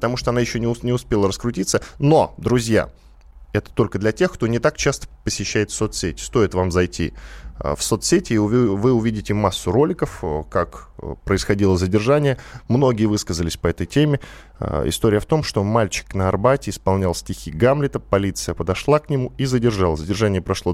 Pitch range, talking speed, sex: 90-125 Hz, 160 wpm, male